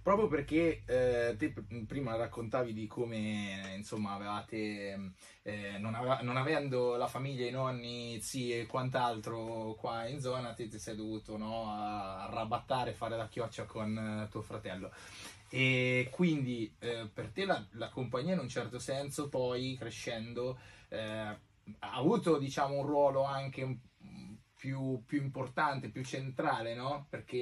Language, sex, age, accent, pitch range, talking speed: Italian, male, 20-39, native, 110-130 Hz, 145 wpm